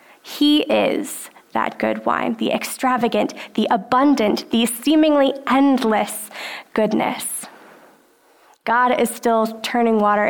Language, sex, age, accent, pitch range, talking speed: English, female, 10-29, American, 220-290 Hz, 105 wpm